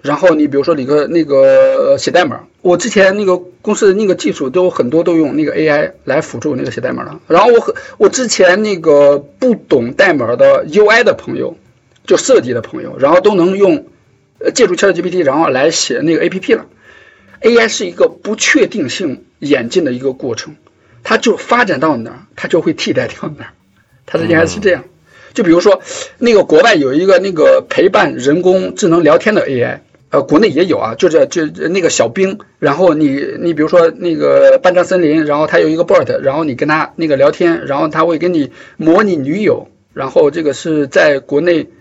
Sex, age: male, 50-69